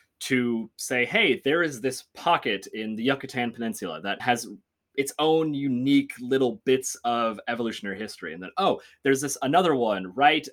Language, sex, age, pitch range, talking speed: English, male, 20-39, 100-135 Hz, 165 wpm